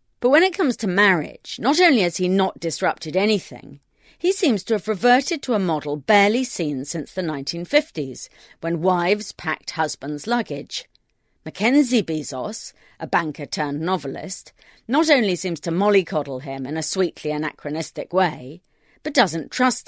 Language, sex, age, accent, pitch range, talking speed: English, female, 40-59, British, 155-220 Hz, 150 wpm